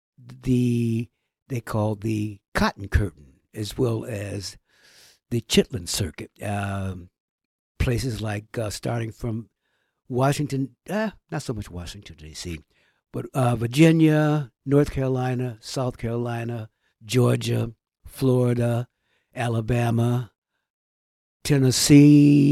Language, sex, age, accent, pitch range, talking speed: English, male, 60-79, American, 100-130 Hz, 100 wpm